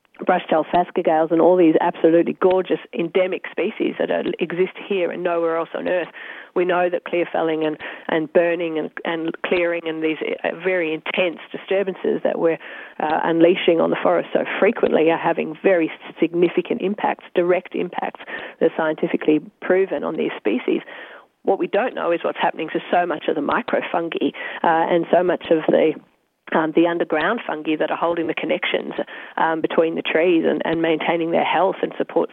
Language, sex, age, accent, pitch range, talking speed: English, female, 40-59, Australian, 165-190 Hz, 180 wpm